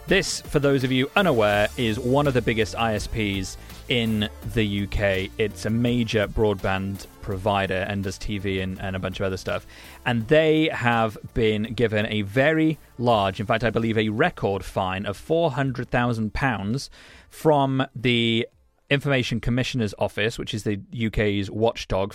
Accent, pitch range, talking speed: British, 100-125 Hz, 155 wpm